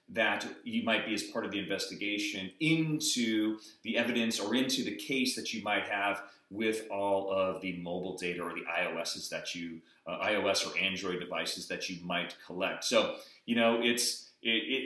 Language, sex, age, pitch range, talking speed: English, male, 30-49, 100-125 Hz, 180 wpm